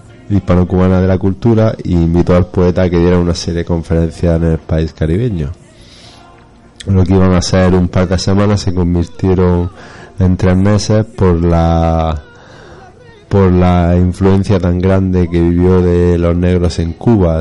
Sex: male